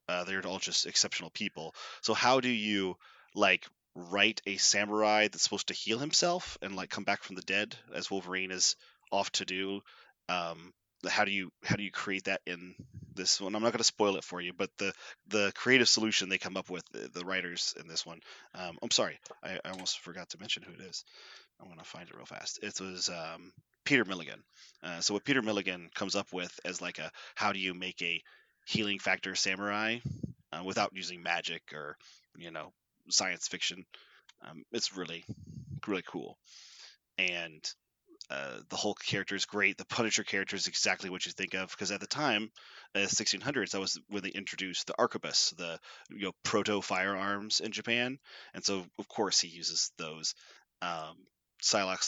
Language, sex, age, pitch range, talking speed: English, male, 30-49, 90-105 Hz, 195 wpm